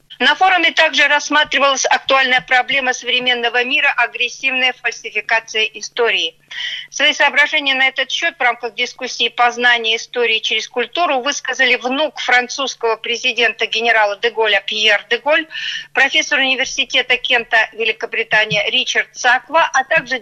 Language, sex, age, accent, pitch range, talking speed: Russian, female, 50-69, native, 225-285 Hz, 120 wpm